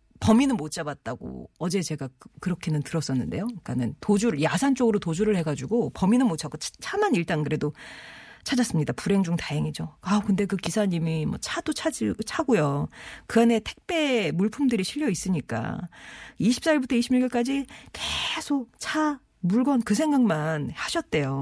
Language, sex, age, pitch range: Korean, female, 40-59, 155-240 Hz